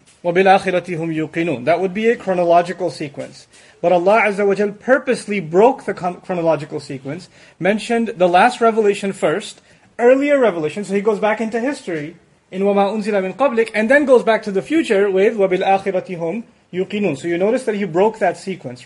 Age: 30-49